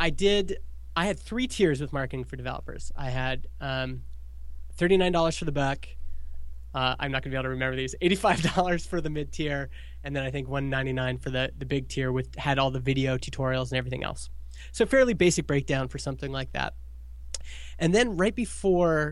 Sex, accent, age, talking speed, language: male, American, 20-39, 215 wpm, English